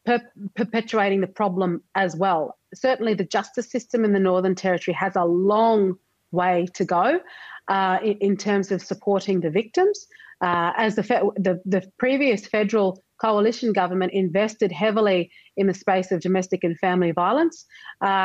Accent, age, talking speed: Australian, 30-49, 150 wpm